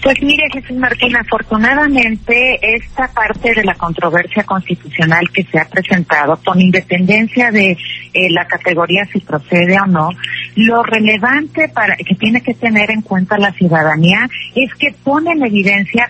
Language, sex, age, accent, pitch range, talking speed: Spanish, female, 40-59, Mexican, 175-240 Hz, 155 wpm